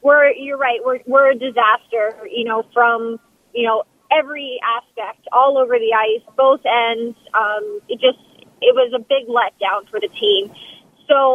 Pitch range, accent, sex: 235-285 Hz, American, female